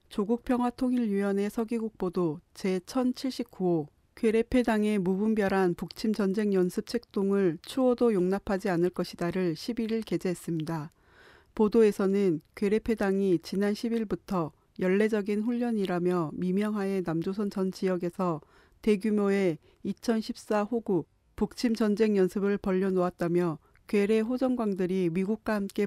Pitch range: 180-215 Hz